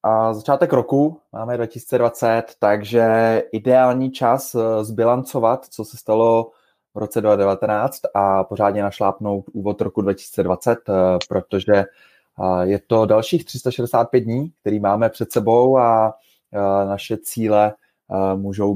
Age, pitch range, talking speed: 20-39, 100-120 Hz, 110 wpm